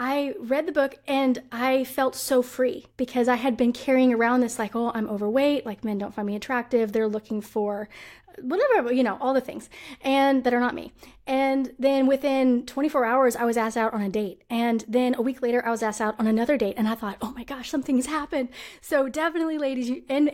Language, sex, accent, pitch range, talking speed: English, female, American, 230-280 Hz, 225 wpm